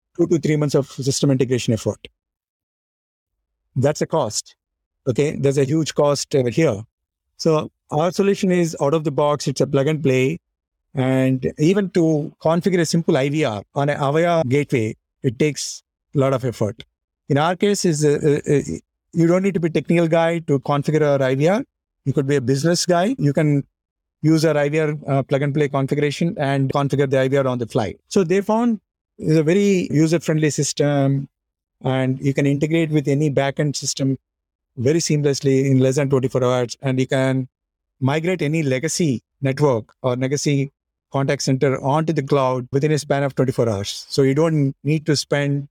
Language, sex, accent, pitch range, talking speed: English, male, Indian, 130-155 Hz, 175 wpm